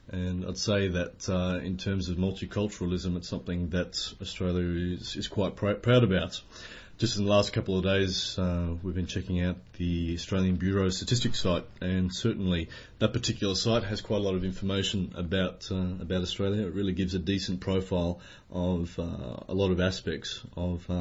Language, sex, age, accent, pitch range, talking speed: English, male, 30-49, Australian, 90-105 Hz, 185 wpm